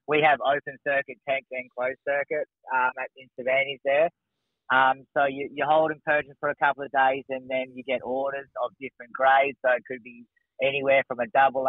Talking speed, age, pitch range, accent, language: 200 wpm, 30-49, 125-135 Hz, Australian, English